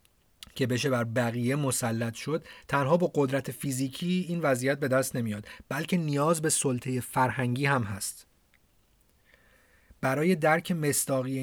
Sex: male